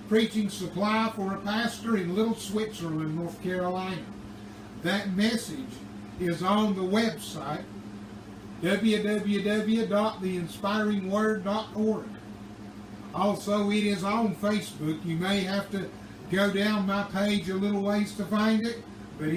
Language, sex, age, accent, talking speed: English, male, 60-79, American, 115 wpm